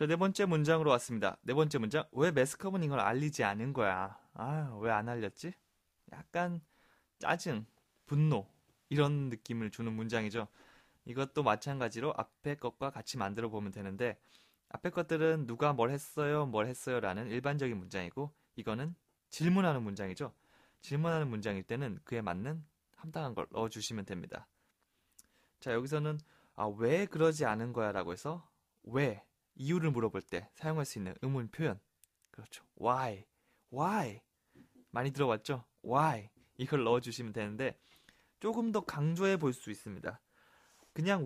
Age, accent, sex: 20-39, native, male